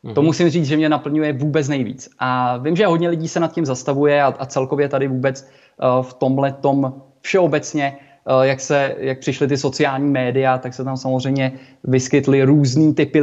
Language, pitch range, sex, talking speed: Czech, 135-155 Hz, male, 175 wpm